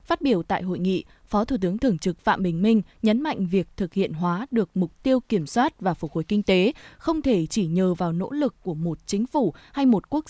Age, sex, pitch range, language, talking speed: 20-39, female, 185-250 Hz, Vietnamese, 250 wpm